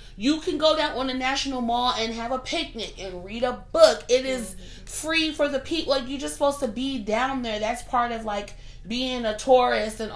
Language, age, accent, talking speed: English, 30-49, American, 225 wpm